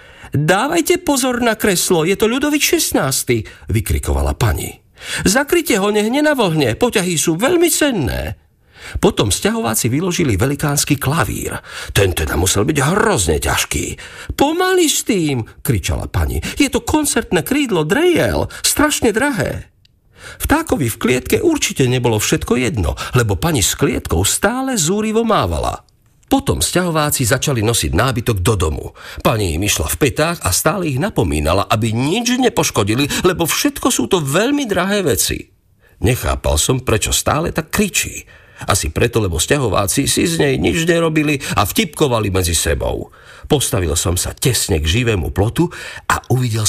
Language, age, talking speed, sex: Slovak, 50-69, 145 wpm, male